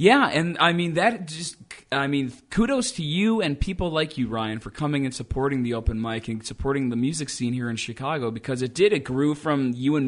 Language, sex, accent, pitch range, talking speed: English, male, American, 115-145 Hz, 230 wpm